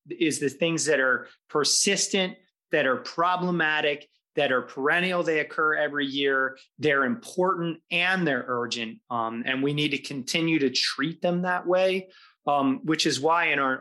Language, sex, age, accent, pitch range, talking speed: English, male, 30-49, American, 135-170 Hz, 165 wpm